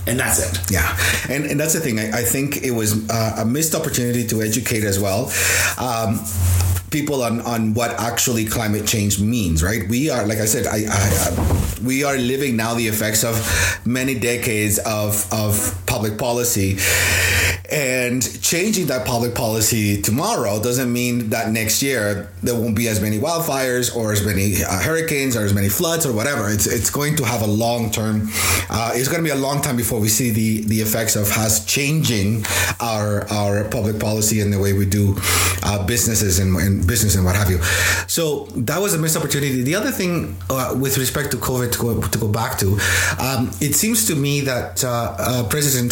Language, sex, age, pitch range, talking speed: English, male, 30-49, 100-120 Hz, 195 wpm